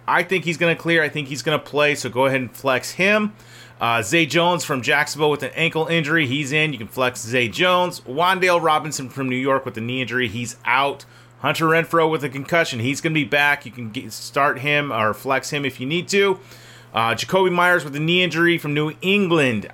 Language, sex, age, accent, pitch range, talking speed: English, male, 30-49, American, 125-155 Hz, 230 wpm